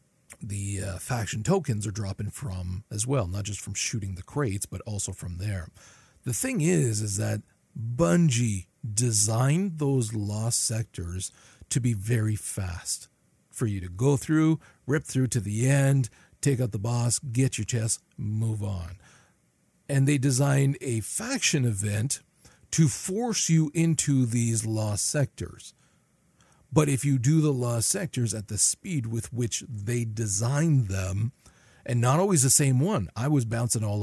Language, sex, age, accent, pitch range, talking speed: English, male, 40-59, American, 100-130 Hz, 160 wpm